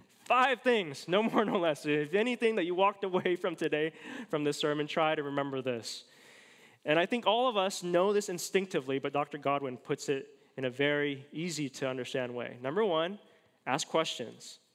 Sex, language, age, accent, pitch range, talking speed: male, English, 20-39, American, 135-185 Hz, 185 wpm